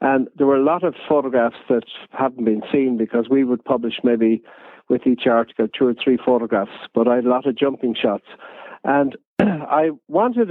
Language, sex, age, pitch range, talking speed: English, male, 50-69, 120-145 Hz, 195 wpm